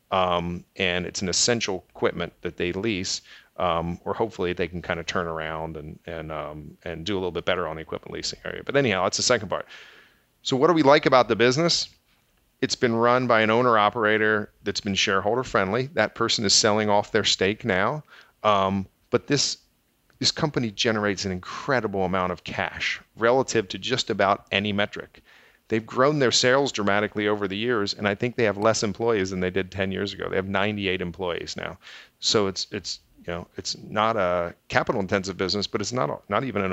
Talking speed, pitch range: 205 wpm, 90-115 Hz